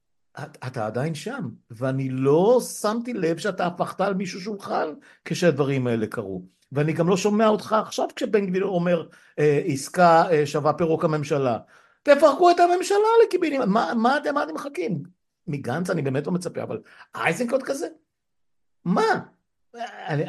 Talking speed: 150 wpm